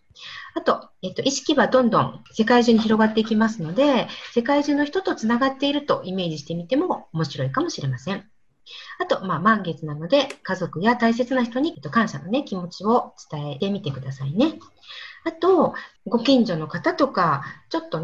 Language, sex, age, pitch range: Japanese, female, 40-59, 175-265 Hz